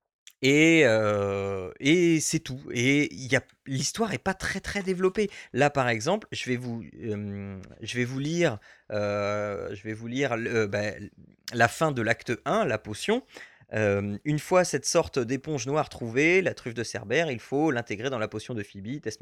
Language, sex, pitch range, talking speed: French, male, 110-150 Hz, 155 wpm